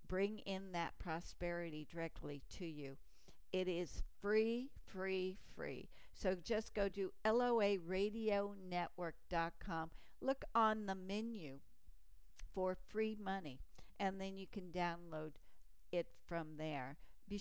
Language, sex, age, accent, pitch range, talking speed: English, female, 60-79, American, 170-210 Hz, 115 wpm